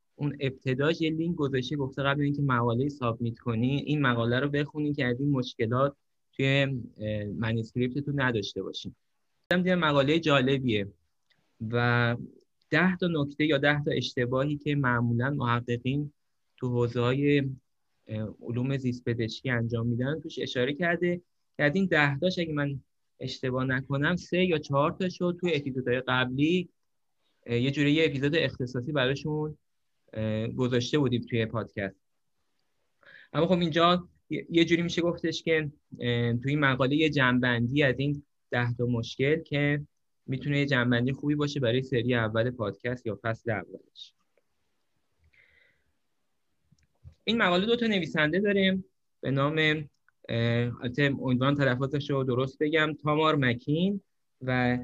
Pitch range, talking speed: 125-155 Hz, 130 wpm